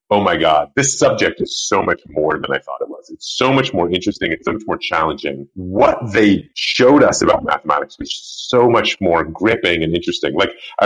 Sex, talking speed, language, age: male, 215 wpm, English, 30-49